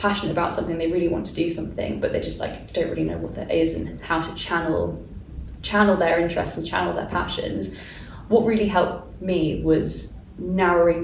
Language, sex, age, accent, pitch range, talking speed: English, female, 10-29, British, 165-195 Hz, 195 wpm